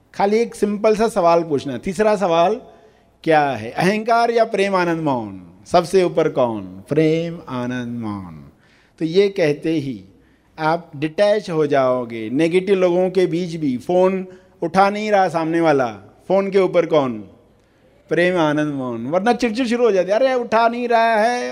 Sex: male